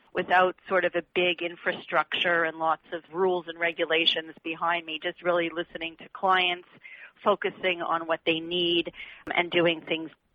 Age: 50-69